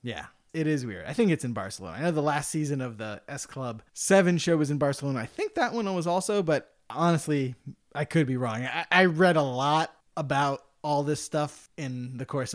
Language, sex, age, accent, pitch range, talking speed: English, male, 30-49, American, 130-175 Hz, 225 wpm